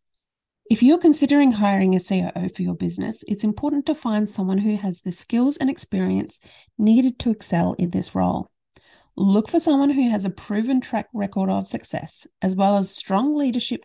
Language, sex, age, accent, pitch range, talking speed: English, female, 30-49, Australian, 190-245 Hz, 180 wpm